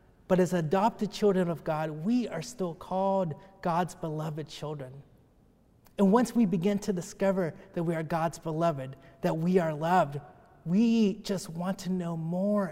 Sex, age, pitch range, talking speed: male, 30-49, 155-190 Hz, 160 wpm